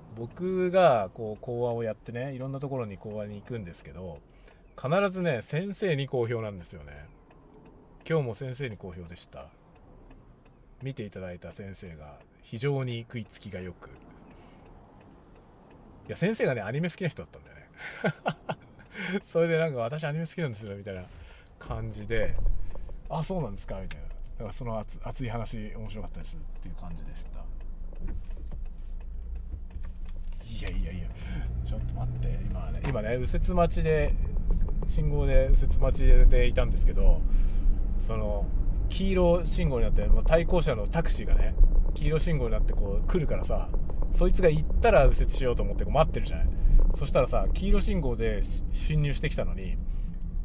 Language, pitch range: Japanese, 80-125 Hz